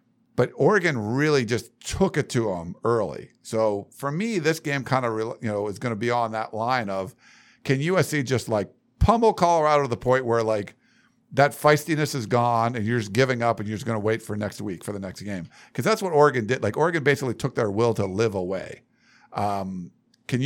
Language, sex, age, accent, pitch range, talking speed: English, male, 50-69, American, 105-140 Hz, 220 wpm